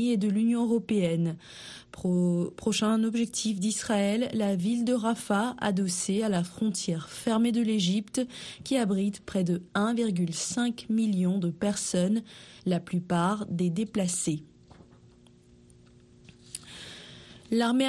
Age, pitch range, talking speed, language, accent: 20-39, 185-230 Hz, 105 wpm, French, French